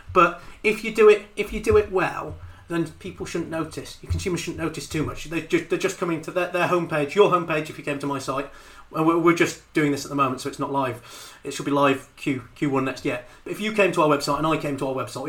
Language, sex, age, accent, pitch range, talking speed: English, male, 40-59, British, 140-170 Hz, 270 wpm